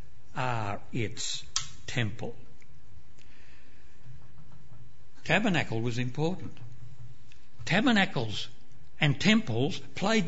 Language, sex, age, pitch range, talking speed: English, male, 60-79, 115-155 Hz, 60 wpm